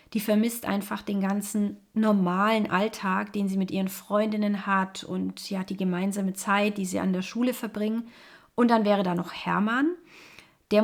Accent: German